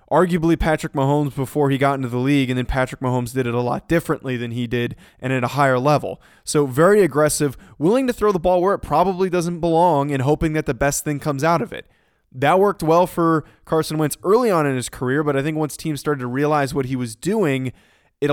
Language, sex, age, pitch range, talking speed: English, male, 20-39, 130-160 Hz, 240 wpm